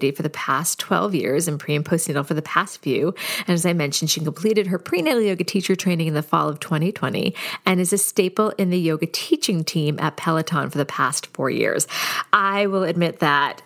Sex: female